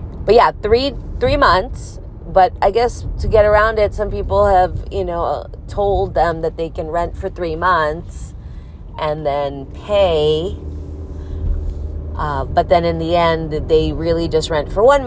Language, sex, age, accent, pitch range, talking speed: English, female, 30-49, American, 135-190 Hz, 165 wpm